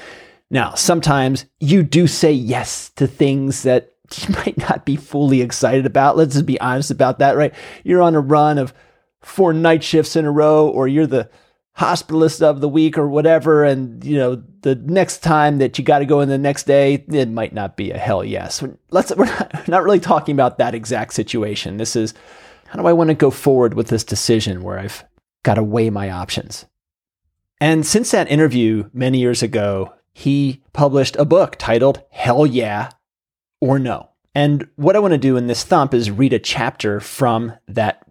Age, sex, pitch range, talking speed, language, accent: 30-49, male, 120-150 Hz, 195 wpm, English, American